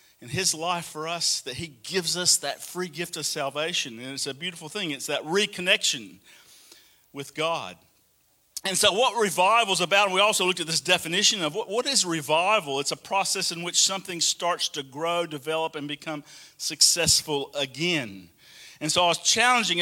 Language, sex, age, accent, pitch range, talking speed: English, male, 50-69, American, 160-215 Hz, 180 wpm